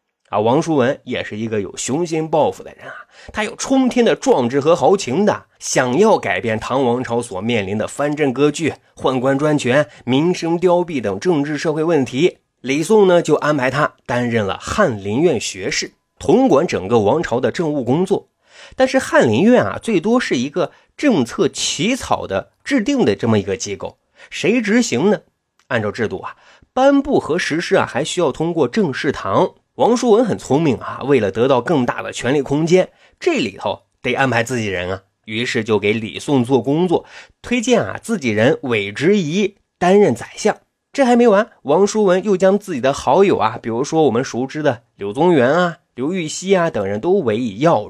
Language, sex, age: Chinese, male, 30-49